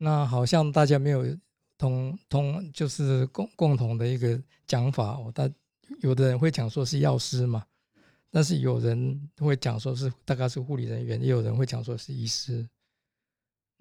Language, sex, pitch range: Chinese, male, 125-145 Hz